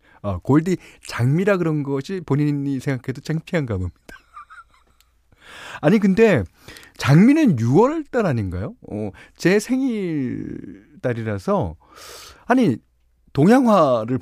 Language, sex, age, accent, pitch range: Korean, male, 40-59, native, 110-180 Hz